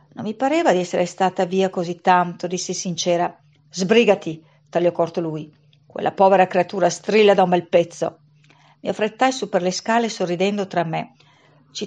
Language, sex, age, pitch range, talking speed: Italian, female, 50-69, 175-220 Hz, 165 wpm